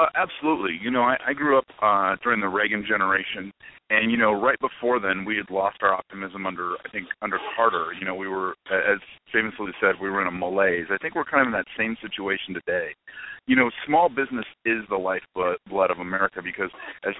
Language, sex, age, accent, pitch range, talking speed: English, male, 40-59, American, 95-125 Hz, 220 wpm